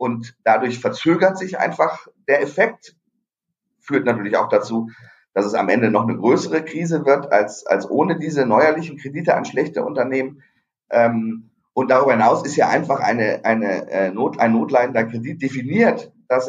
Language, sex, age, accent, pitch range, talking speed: German, male, 30-49, German, 110-140 Hz, 155 wpm